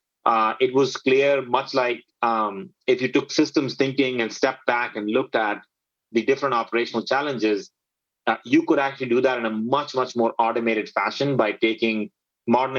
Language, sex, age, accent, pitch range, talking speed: English, male, 30-49, Indian, 110-135 Hz, 180 wpm